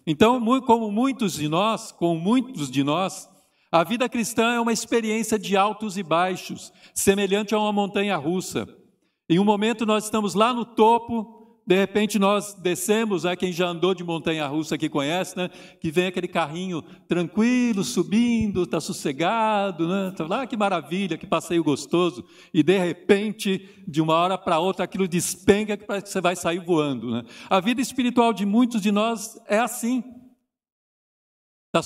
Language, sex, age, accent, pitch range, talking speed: Portuguese, male, 60-79, Brazilian, 165-215 Hz, 170 wpm